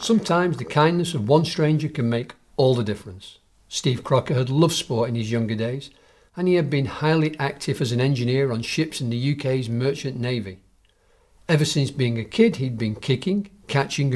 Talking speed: 190 wpm